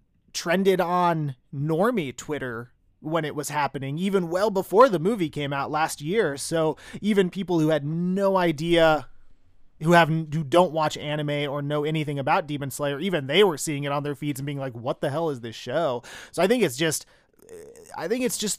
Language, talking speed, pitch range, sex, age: English, 200 wpm, 145-185 Hz, male, 30-49